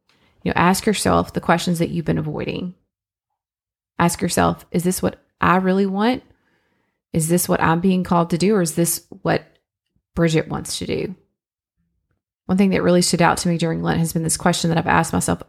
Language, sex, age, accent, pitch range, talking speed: English, female, 30-49, American, 155-190 Hz, 200 wpm